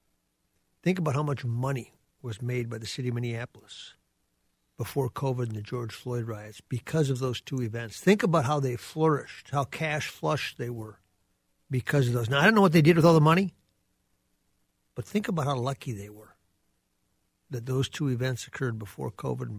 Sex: male